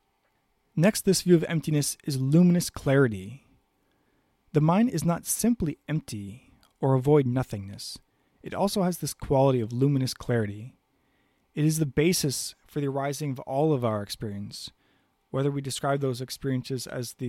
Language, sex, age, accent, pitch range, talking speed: English, male, 20-39, American, 125-155 Hz, 155 wpm